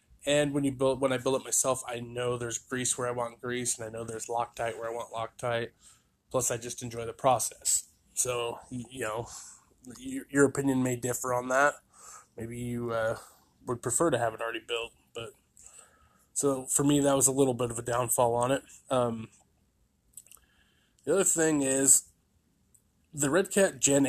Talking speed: 185 wpm